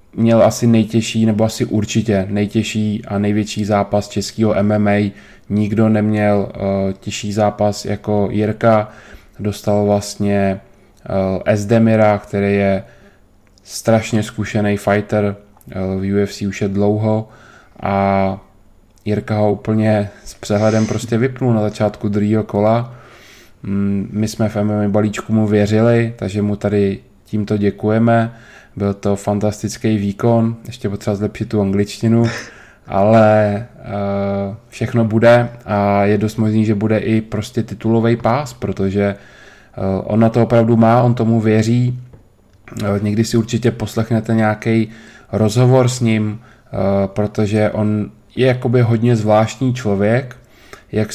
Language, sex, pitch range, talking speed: Czech, male, 100-115 Hz, 125 wpm